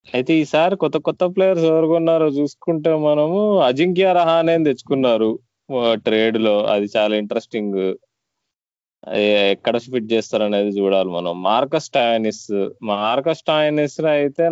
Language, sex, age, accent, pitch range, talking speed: Telugu, male, 20-39, native, 105-135 Hz, 110 wpm